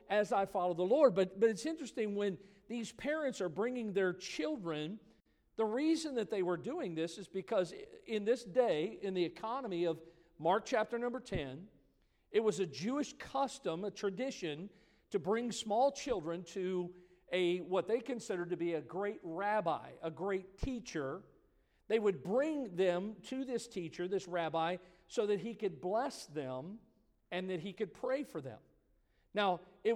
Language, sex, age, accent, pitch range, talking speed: English, male, 50-69, American, 175-225 Hz, 170 wpm